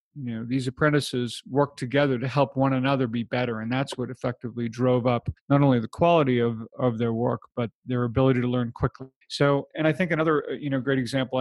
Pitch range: 125-140 Hz